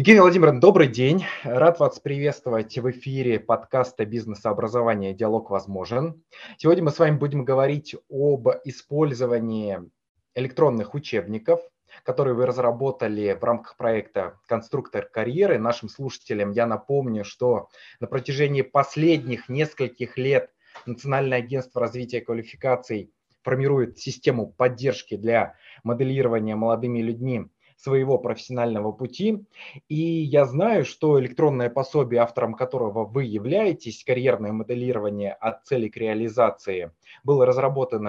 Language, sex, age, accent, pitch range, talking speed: Russian, male, 20-39, native, 115-140 Hz, 115 wpm